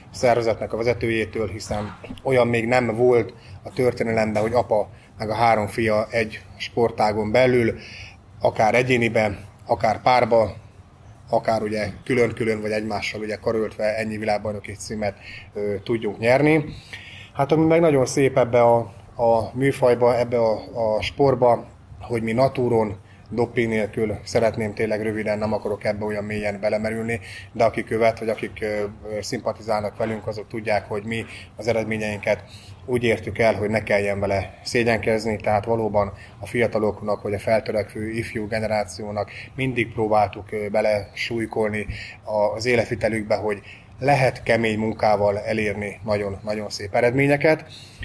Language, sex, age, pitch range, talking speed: Hungarian, male, 30-49, 105-120 Hz, 135 wpm